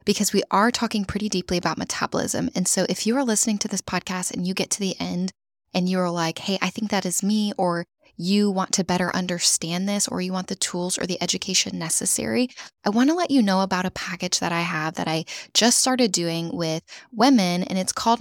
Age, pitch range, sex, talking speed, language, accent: 10-29, 175-215 Hz, female, 225 wpm, English, American